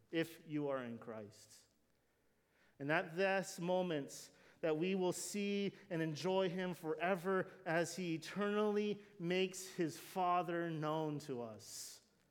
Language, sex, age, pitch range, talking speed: English, male, 40-59, 150-190 Hz, 125 wpm